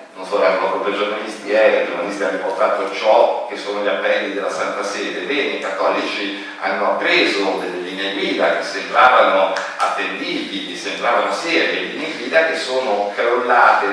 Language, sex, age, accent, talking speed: Italian, male, 50-69, native, 165 wpm